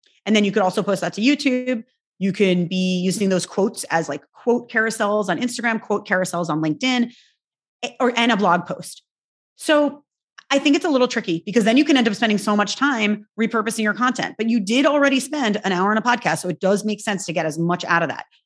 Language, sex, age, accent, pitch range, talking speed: English, female, 30-49, American, 185-235 Hz, 235 wpm